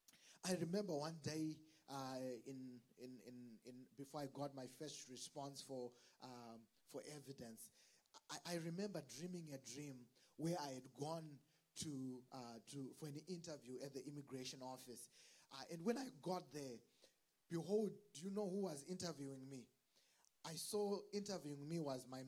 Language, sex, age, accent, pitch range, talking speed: English, male, 20-39, South African, 140-185 Hz, 160 wpm